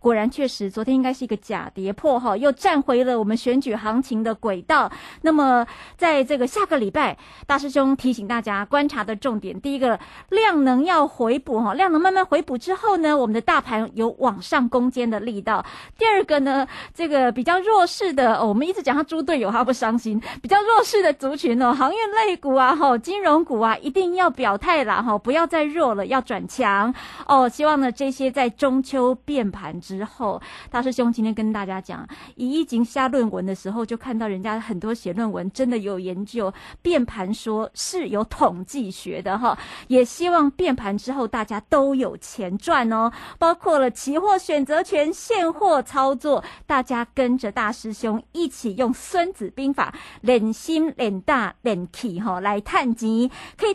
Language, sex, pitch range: Chinese, female, 225-300 Hz